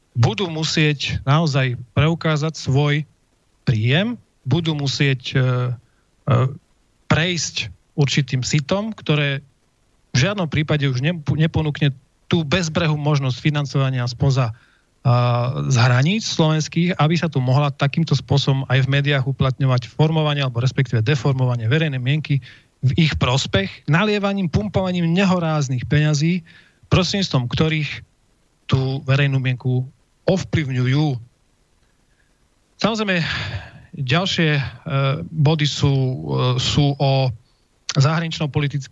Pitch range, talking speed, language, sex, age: 130-155 Hz, 100 wpm, Slovak, male, 40-59